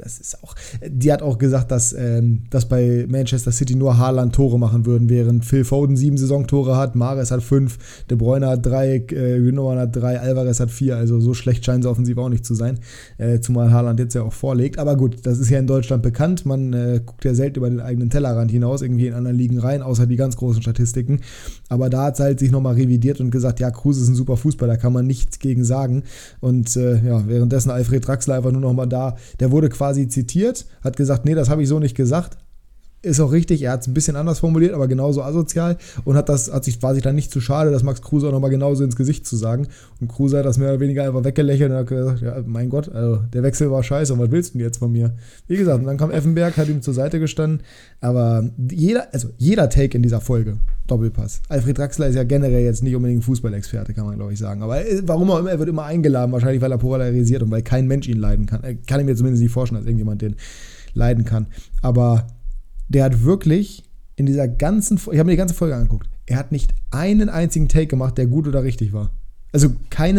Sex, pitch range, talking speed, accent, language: male, 120-140 Hz, 245 wpm, German, German